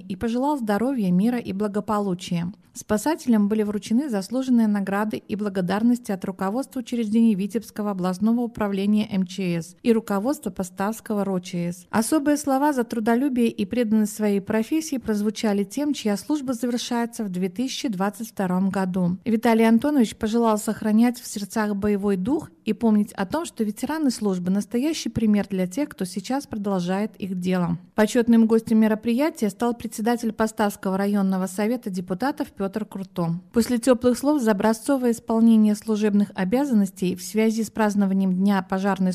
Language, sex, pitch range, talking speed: Russian, female, 200-235 Hz, 140 wpm